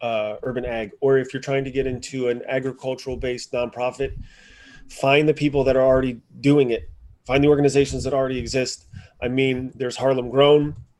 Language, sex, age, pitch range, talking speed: English, male, 30-49, 115-135 Hz, 180 wpm